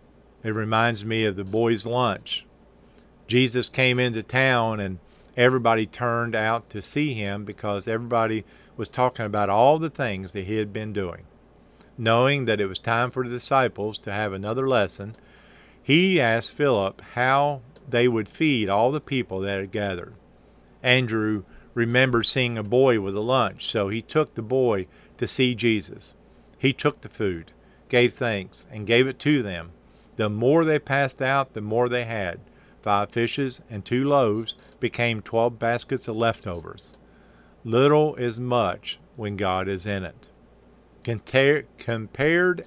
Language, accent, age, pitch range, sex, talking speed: English, American, 50-69, 105-130 Hz, male, 155 wpm